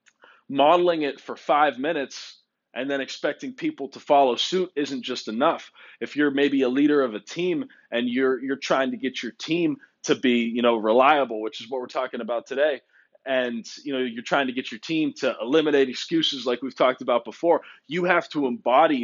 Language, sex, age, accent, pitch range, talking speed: English, male, 20-39, American, 125-165 Hz, 200 wpm